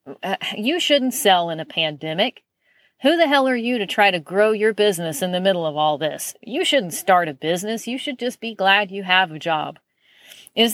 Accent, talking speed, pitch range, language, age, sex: American, 210 wpm, 170-220 Hz, English, 40-59, female